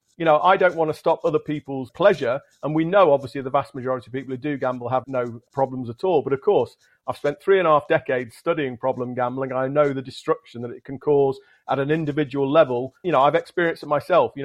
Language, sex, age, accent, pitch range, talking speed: English, male, 40-59, British, 135-170 Hz, 250 wpm